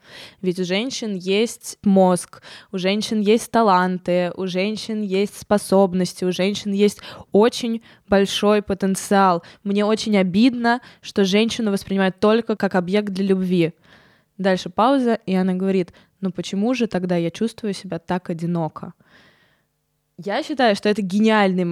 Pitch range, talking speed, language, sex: 185-220 Hz, 135 wpm, Russian, female